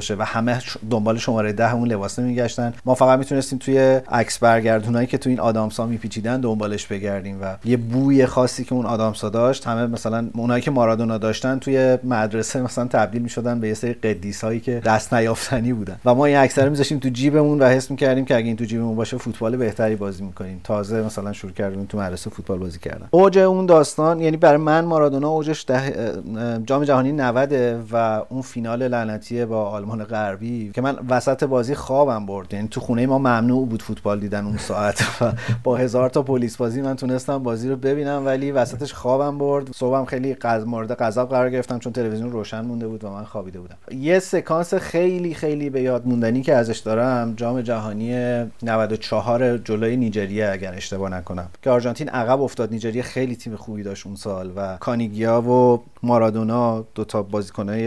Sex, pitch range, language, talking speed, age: male, 110-130 Hz, Persian, 185 wpm, 30-49